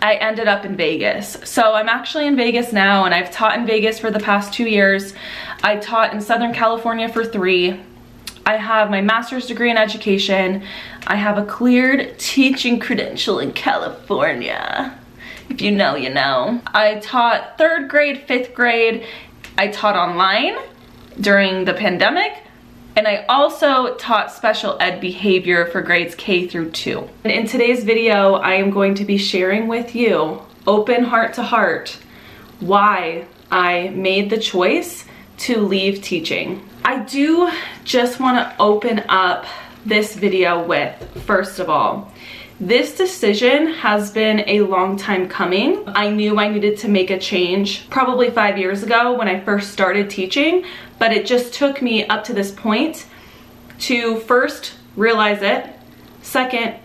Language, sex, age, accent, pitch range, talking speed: English, female, 20-39, American, 195-235 Hz, 155 wpm